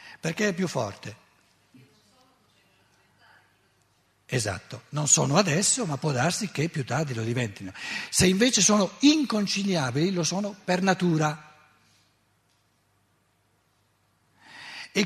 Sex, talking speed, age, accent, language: male, 100 wpm, 60-79, native, Italian